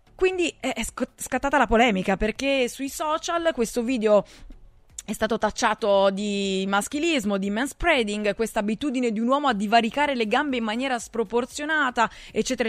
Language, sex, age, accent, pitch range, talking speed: Italian, female, 20-39, native, 195-250 Hz, 140 wpm